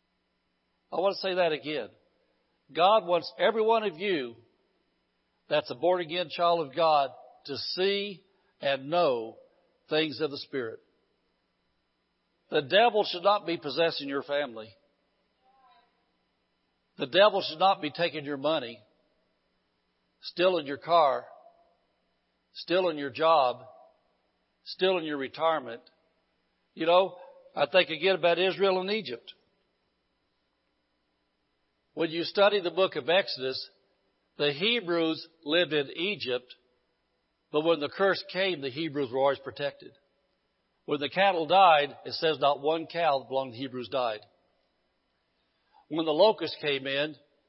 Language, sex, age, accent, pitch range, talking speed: English, male, 60-79, American, 145-185 Hz, 130 wpm